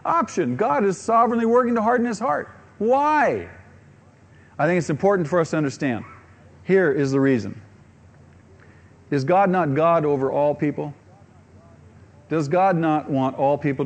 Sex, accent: male, American